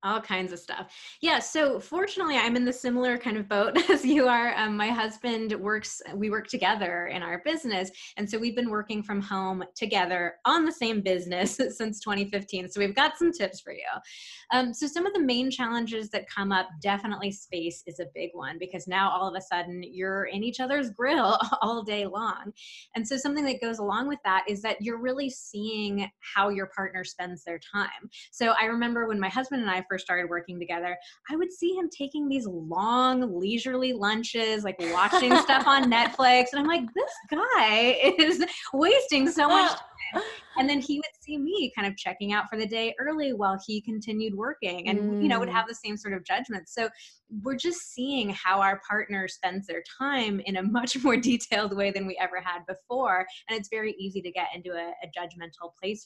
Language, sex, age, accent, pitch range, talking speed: English, female, 20-39, American, 195-270 Hz, 205 wpm